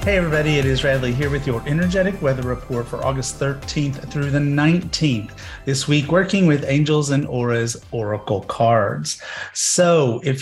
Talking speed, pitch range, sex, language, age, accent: 160 wpm, 120-155 Hz, male, English, 30-49, American